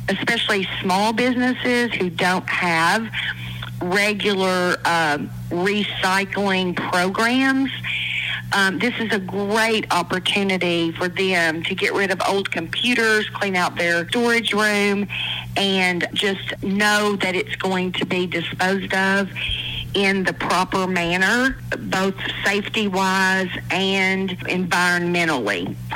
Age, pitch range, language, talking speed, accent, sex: 40-59, 175-215 Hz, English, 110 wpm, American, female